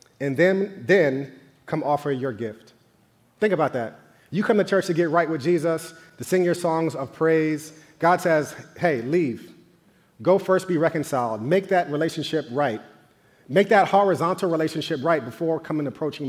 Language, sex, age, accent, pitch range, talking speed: English, male, 40-59, American, 140-175 Hz, 165 wpm